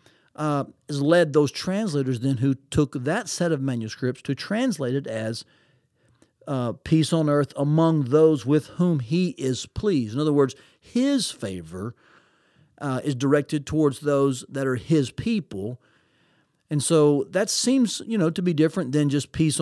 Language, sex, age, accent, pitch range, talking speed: English, male, 50-69, American, 130-165 Hz, 160 wpm